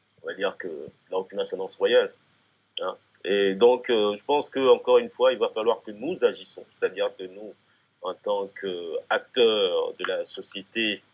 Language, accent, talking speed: French, French, 170 wpm